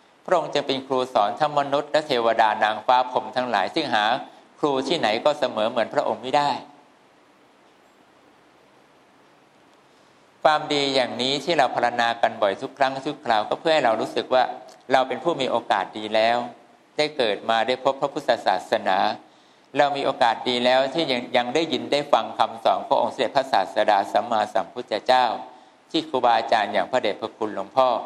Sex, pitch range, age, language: male, 120-145 Hz, 60-79, English